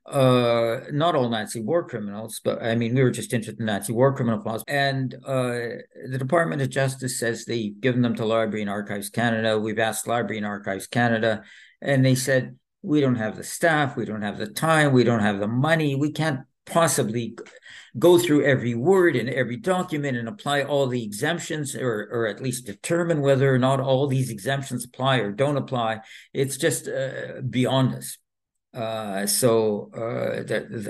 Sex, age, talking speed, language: male, 60-79, 185 wpm, English